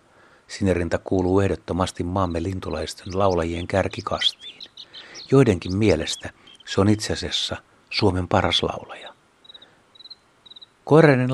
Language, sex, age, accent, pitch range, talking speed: Finnish, male, 60-79, native, 85-110 Hz, 85 wpm